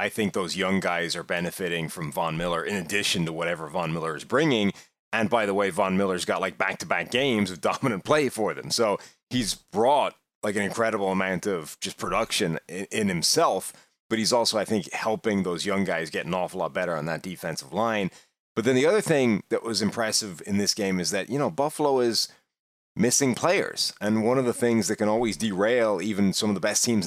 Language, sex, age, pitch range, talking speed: English, male, 30-49, 95-115 Hz, 215 wpm